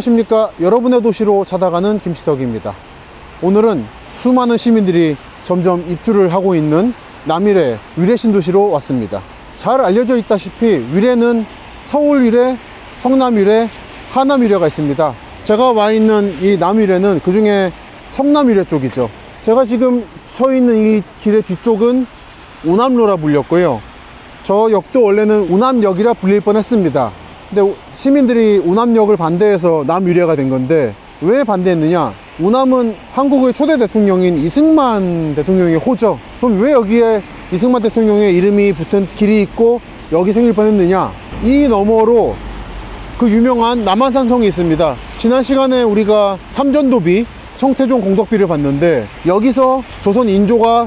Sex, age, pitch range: male, 30-49, 180-240 Hz